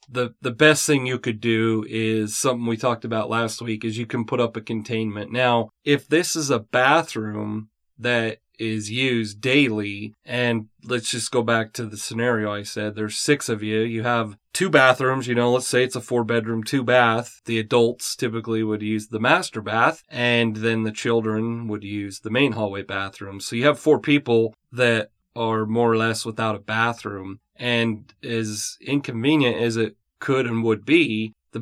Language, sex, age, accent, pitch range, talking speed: English, male, 30-49, American, 110-125 Hz, 190 wpm